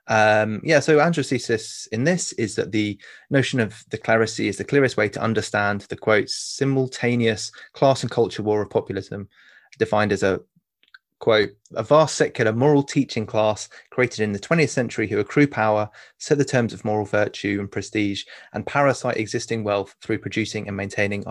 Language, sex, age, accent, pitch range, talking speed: English, male, 20-39, British, 105-125 Hz, 175 wpm